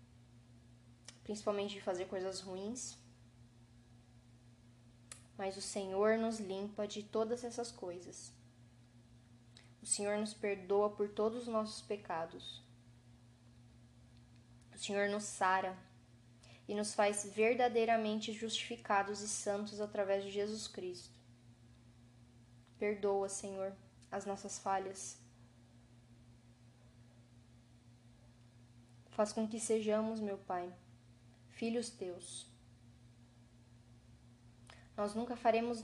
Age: 10-29